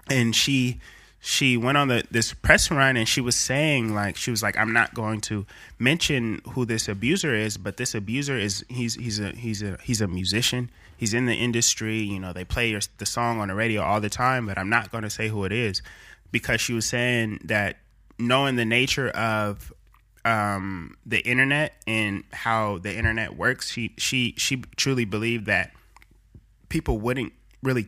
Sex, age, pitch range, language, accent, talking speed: male, 20-39, 100-120 Hz, English, American, 190 wpm